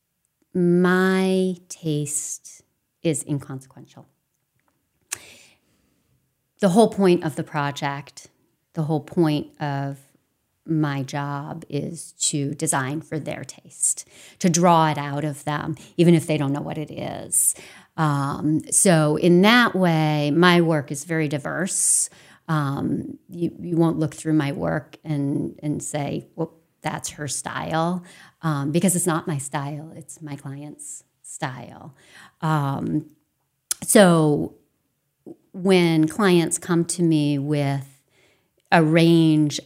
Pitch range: 145-170 Hz